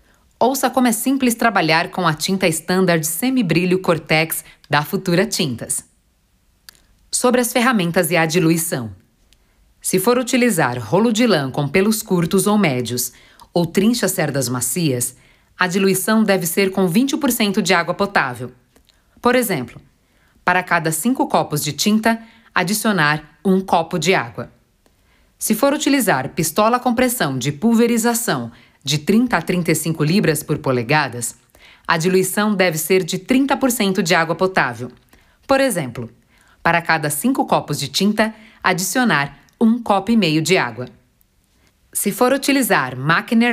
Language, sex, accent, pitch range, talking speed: Portuguese, female, Brazilian, 150-220 Hz, 140 wpm